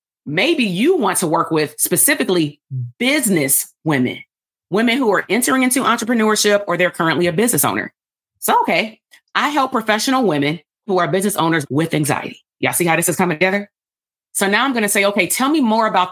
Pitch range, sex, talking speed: 150-215 Hz, female, 185 wpm